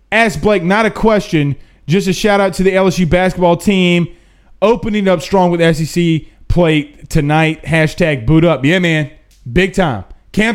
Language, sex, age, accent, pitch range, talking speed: English, male, 30-49, American, 140-200 Hz, 165 wpm